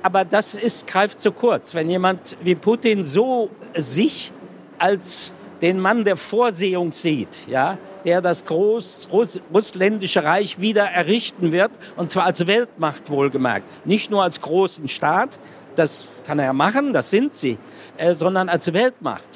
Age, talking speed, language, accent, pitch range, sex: 50-69, 150 wpm, German, German, 175-215 Hz, male